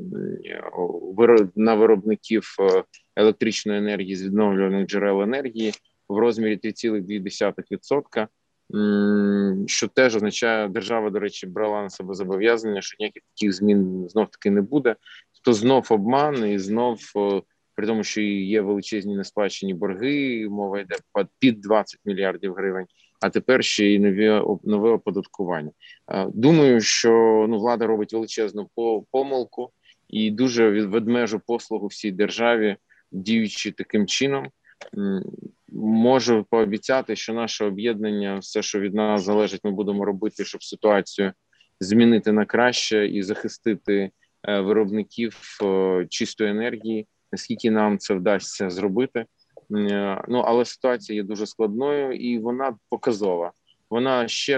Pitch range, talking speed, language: 100-115 Hz, 120 wpm, Ukrainian